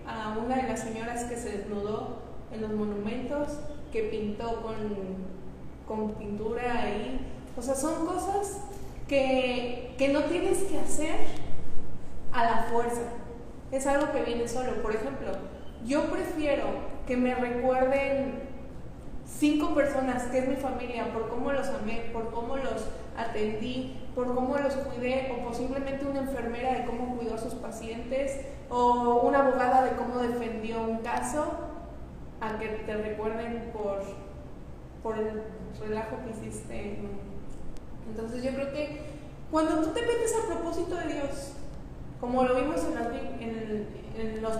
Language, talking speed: Spanish, 145 wpm